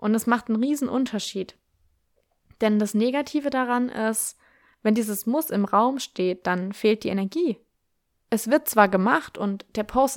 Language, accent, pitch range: German, German, 190-225 Hz